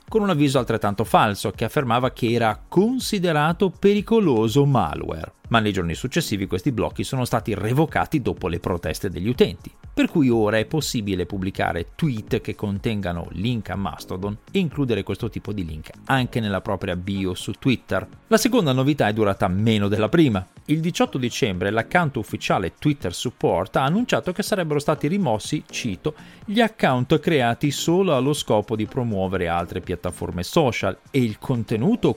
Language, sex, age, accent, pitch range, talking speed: Italian, male, 40-59, native, 95-150 Hz, 160 wpm